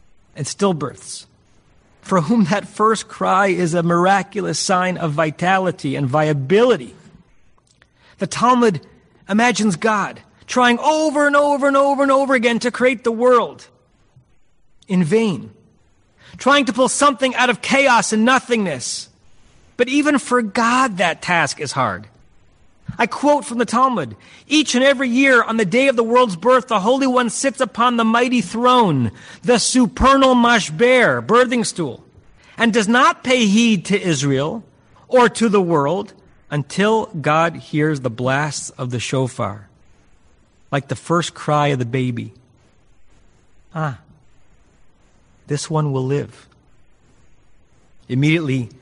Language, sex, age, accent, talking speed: English, male, 40-59, American, 140 wpm